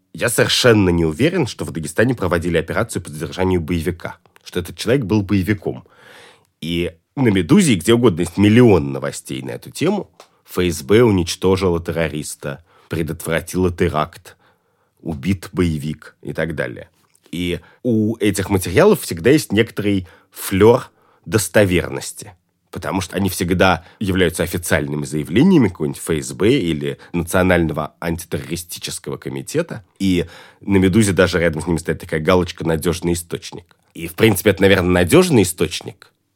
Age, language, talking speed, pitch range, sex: 30-49, Russian, 130 wpm, 80-100 Hz, male